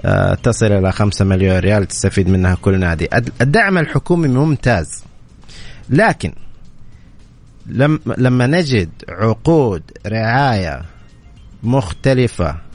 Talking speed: 85 wpm